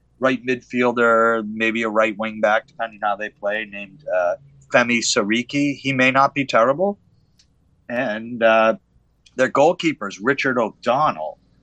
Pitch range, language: 100-125 Hz, English